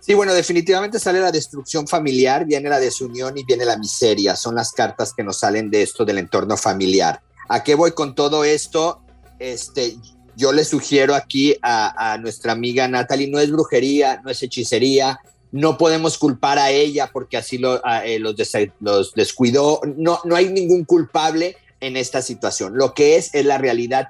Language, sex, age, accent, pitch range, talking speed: Spanish, male, 50-69, Mexican, 120-150 Hz, 185 wpm